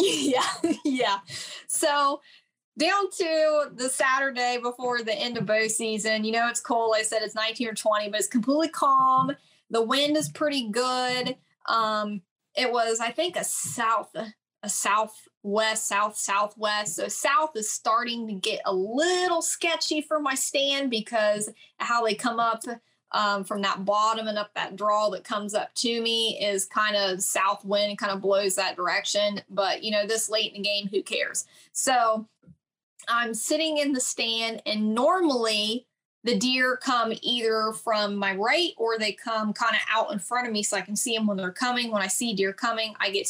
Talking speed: 185 wpm